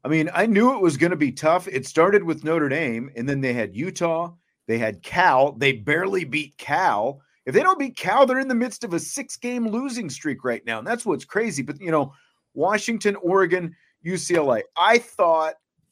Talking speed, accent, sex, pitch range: 205 wpm, American, male, 130-170 Hz